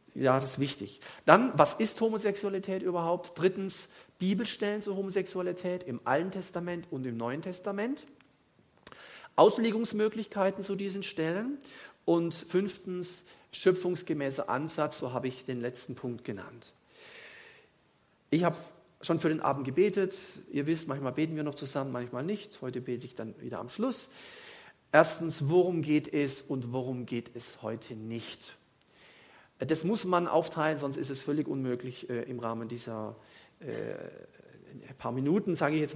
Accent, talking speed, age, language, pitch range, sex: German, 145 wpm, 50-69, German, 130-195 Hz, male